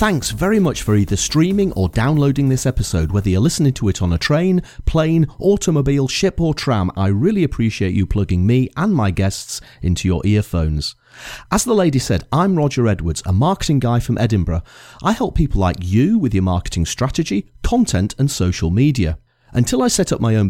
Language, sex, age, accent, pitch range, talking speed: English, male, 40-59, British, 95-150 Hz, 195 wpm